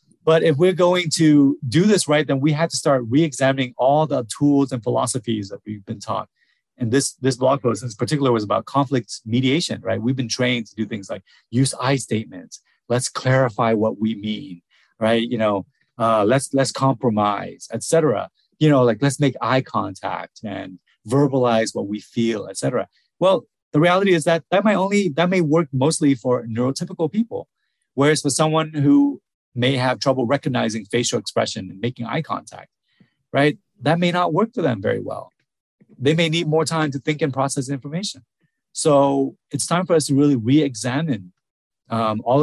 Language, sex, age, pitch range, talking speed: English, male, 30-49, 115-150 Hz, 180 wpm